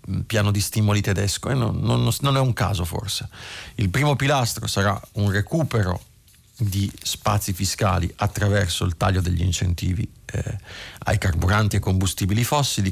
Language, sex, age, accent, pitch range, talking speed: Italian, male, 30-49, native, 100-125 Hz, 150 wpm